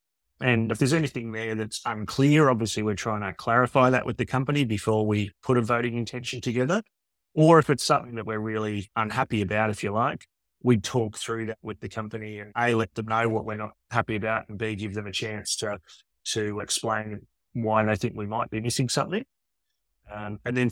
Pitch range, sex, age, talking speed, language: 105-125 Hz, male, 30-49, 210 wpm, English